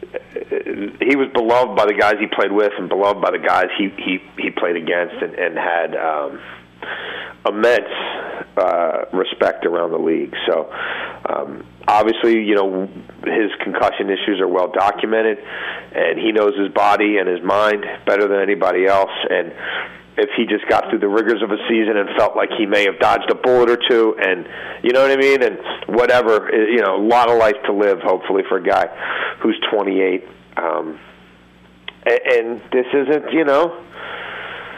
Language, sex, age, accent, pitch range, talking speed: English, male, 40-59, American, 95-135 Hz, 175 wpm